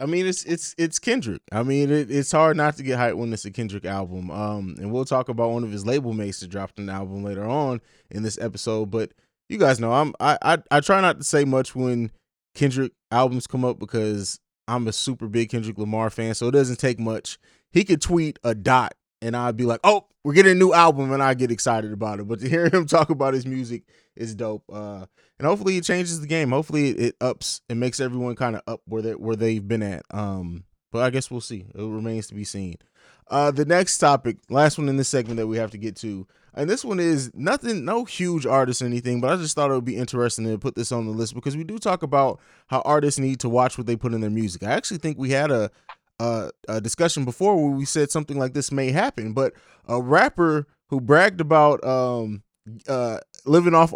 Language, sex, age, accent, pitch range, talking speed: English, male, 20-39, American, 115-150 Hz, 240 wpm